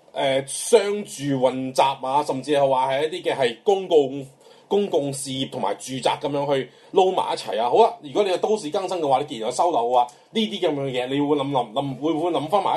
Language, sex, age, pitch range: Chinese, male, 30-49, 140-195 Hz